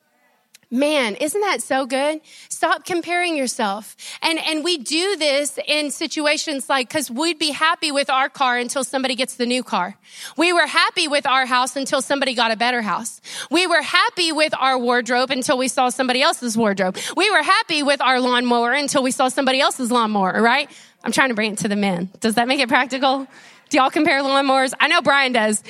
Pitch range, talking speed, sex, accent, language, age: 235-305 Hz, 205 wpm, female, American, English, 30-49